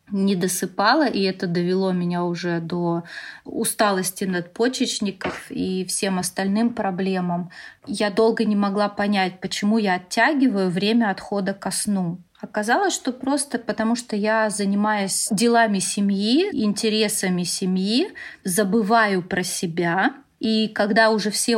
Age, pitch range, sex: 30-49, 190-220 Hz, female